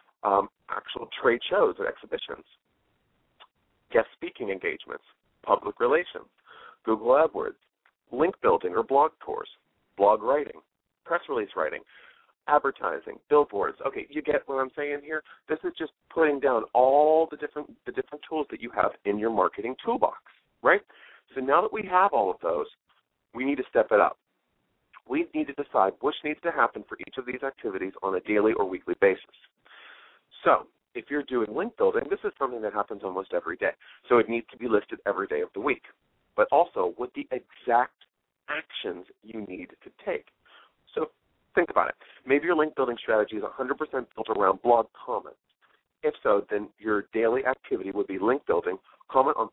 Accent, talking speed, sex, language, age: American, 175 wpm, male, English, 40-59